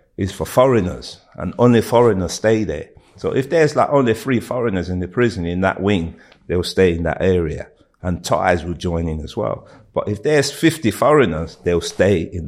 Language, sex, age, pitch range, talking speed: English, male, 50-69, 85-105 Hz, 195 wpm